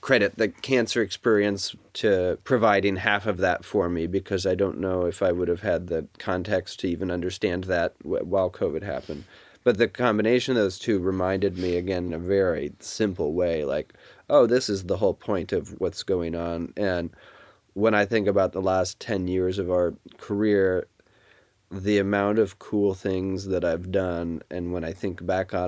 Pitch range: 90-110 Hz